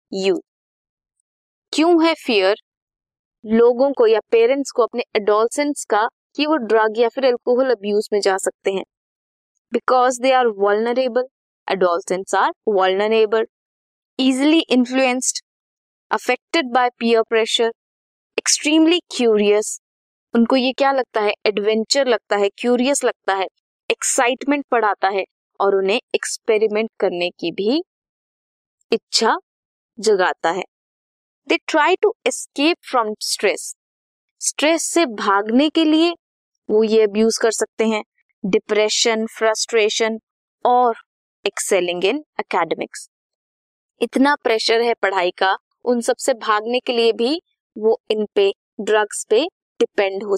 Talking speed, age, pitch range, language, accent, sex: 95 wpm, 20-39, 215-290 Hz, Hindi, native, female